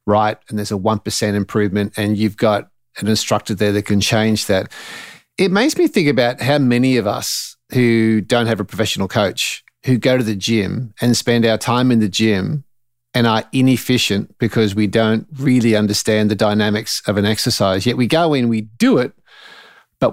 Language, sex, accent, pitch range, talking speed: English, male, Australian, 110-130 Hz, 190 wpm